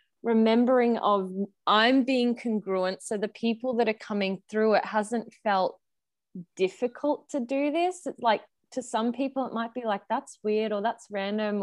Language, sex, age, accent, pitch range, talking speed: English, female, 20-39, Australian, 185-230 Hz, 170 wpm